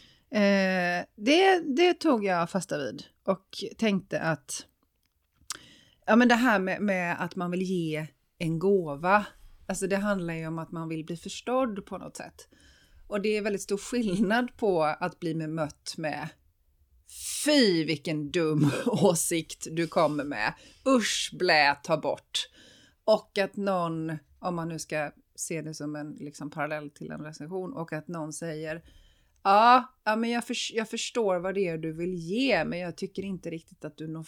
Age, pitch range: 30-49, 165-220 Hz